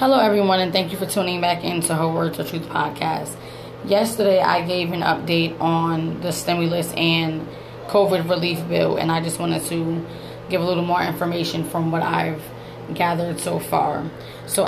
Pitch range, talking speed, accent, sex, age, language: 165-195 Hz, 175 wpm, American, female, 20-39, English